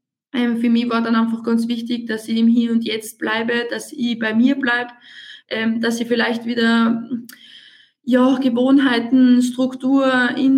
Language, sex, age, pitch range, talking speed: German, female, 20-39, 230-245 Hz, 165 wpm